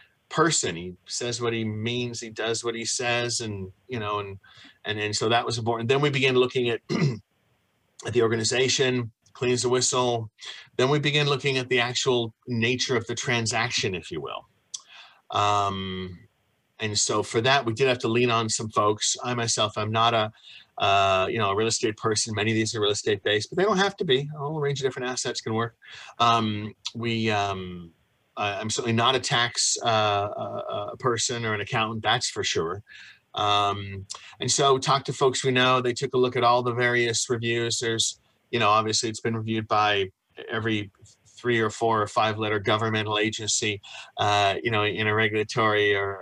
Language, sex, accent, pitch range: English, male, American, 105-120 Hz